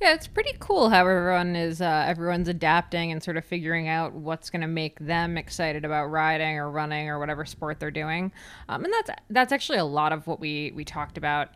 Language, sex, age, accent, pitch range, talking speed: English, female, 20-39, American, 150-175 Hz, 220 wpm